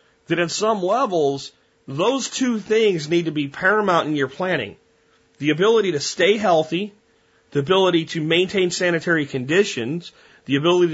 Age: 30-49